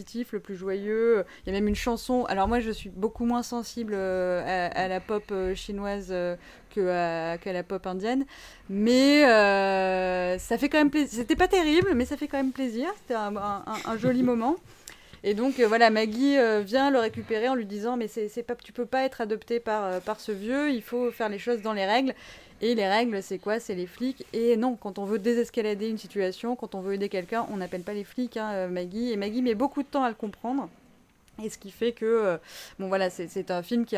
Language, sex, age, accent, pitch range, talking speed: French, female, 20-39, French, 195-245 Hz, 230 wpm